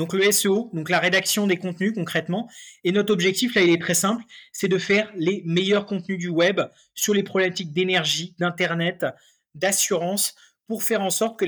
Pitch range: 175-220 Hz